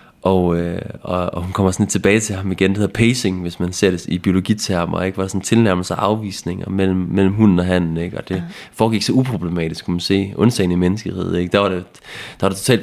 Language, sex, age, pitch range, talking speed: Danish, male, 30-49, 90-110 Hz, 250 wpm